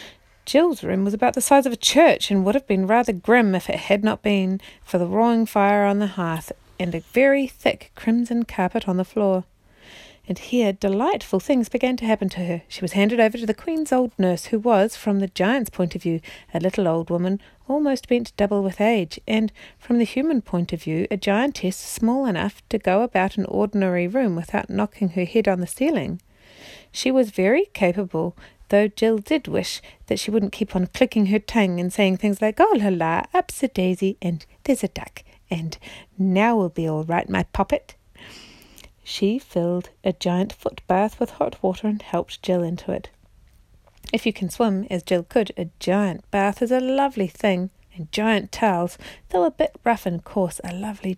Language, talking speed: English, 200 wpm